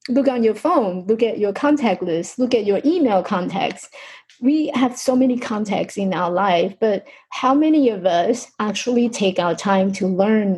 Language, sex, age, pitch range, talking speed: English, female, 30-49, 190-250 Hz, 185 wpm